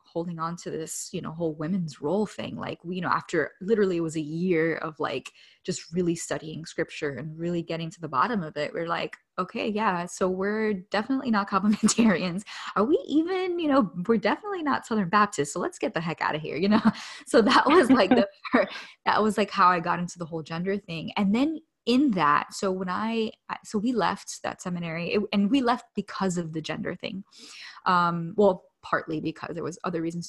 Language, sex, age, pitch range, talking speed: English, female, 10-29, 165-210 Hz, 210 wpm